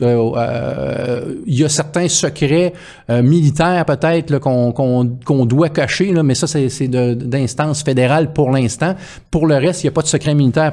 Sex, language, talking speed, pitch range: male, French, 160 wpm, 120-150 Hz